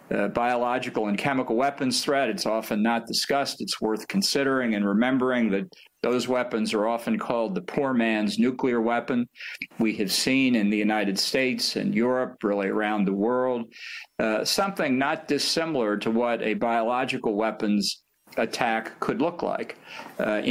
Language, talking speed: English, 155 wpm